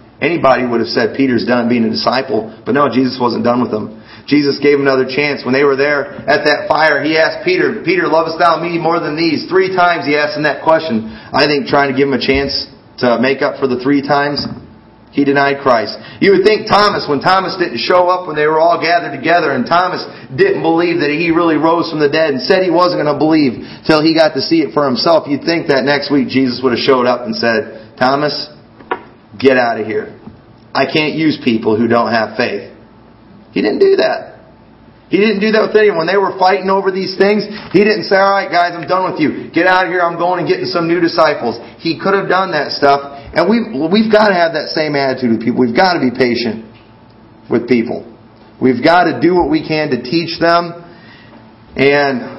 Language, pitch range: English, 130-175 Hz